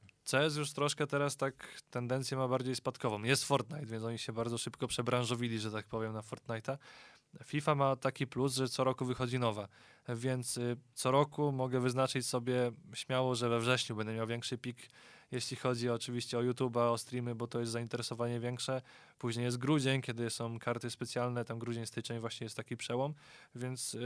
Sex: male